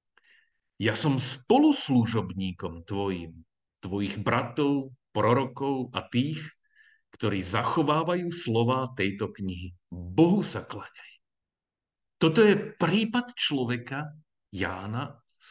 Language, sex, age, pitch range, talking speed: Slovak, male, 50-69, 105-150 Hz, 85 wpm